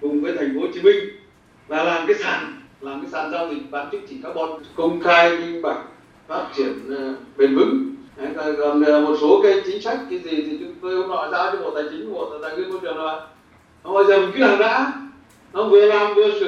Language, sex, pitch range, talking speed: Vietnamese, male, 185-275 Hz, 60 wpm